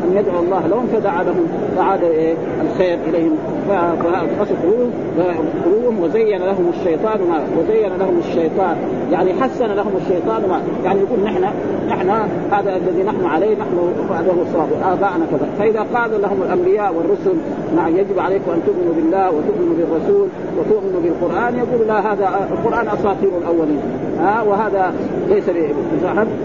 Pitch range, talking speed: 195-325 Hz, 140 wpm